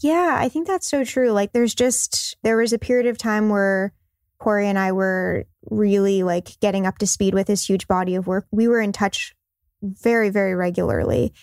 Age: 10-29